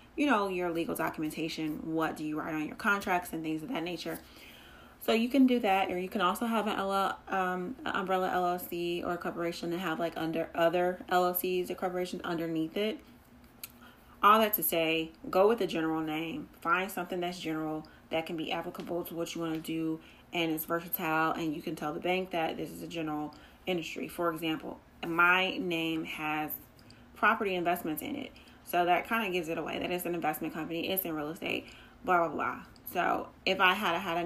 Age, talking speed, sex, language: 30-49, 210 wpm, female, English